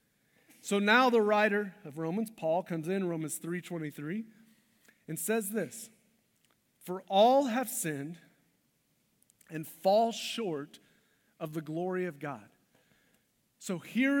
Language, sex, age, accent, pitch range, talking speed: English, male, 40-59, American, 175-230 Hz, 120 wpm